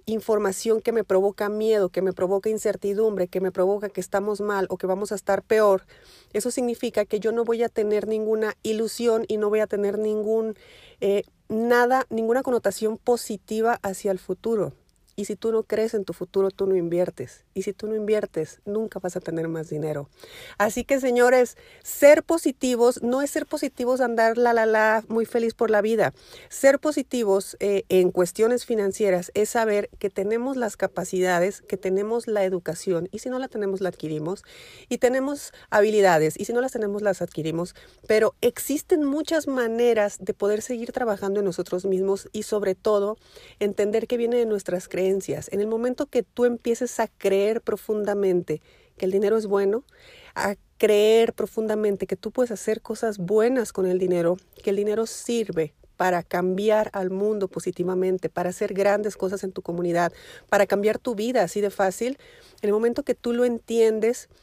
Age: 40-59